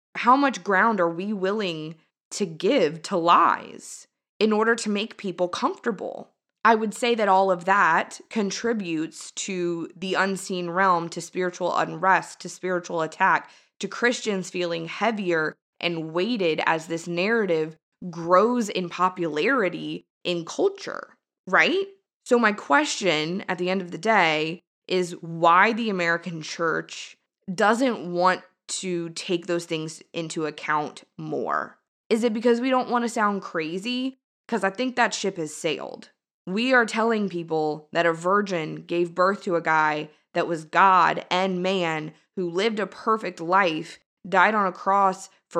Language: English